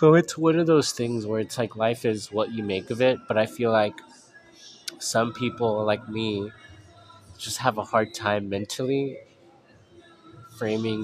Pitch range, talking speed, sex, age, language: 105-125 Hz, 170 wpm, male, 20-39, English